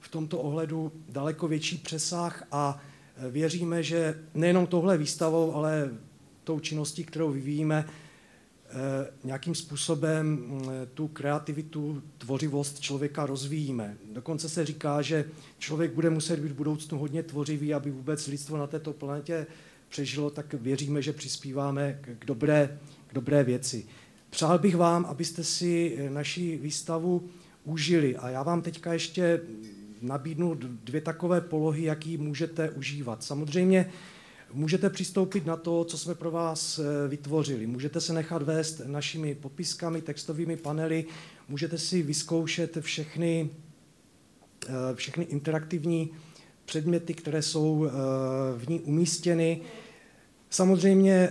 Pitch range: 145-165 Hz